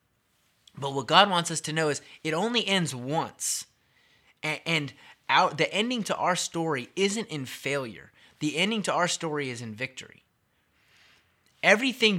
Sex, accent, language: male, American, English